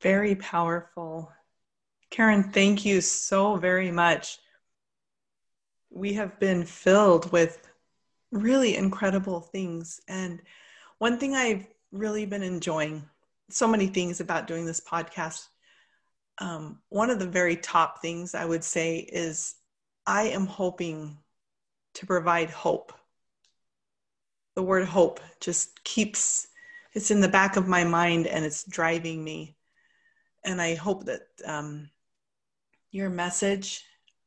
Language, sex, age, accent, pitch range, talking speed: English, female, 30-49, American, 170-210 Hz, 125 wpm